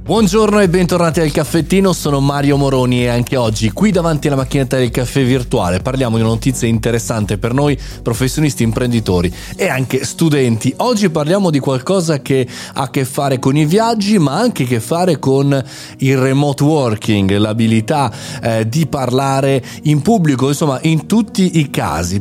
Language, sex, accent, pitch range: Italian, male, native, 115-155 Hz